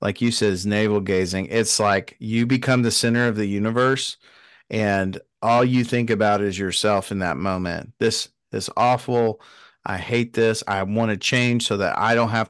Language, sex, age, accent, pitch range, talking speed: English, male, 40-59, American, 105-125 Hz, 190 wpm